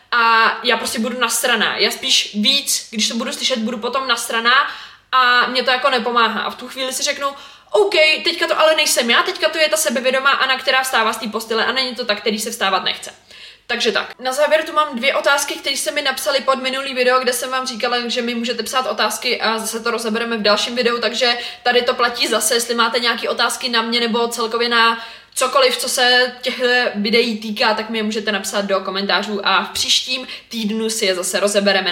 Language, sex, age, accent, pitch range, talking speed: Czech, female, 20-39, native, 235-275 Hz, 225 wpm